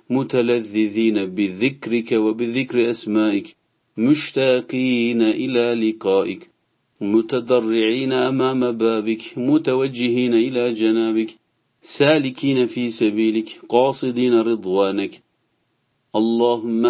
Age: 40-59